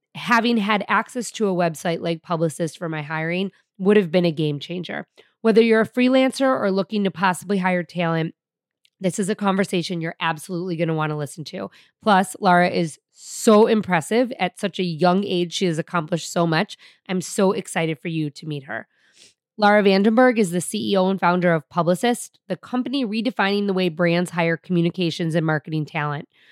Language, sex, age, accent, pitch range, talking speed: English, female, 20-39, American, 175-215 Hz, 185 wpm